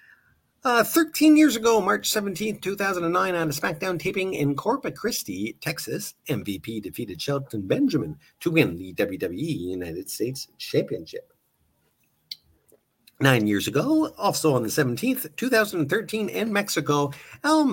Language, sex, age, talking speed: English, male, 50-69, 125 wpm